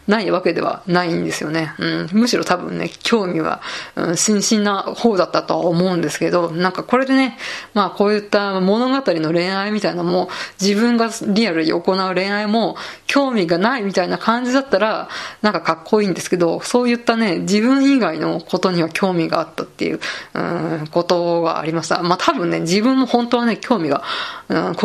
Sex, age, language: female, 20-39, Japanese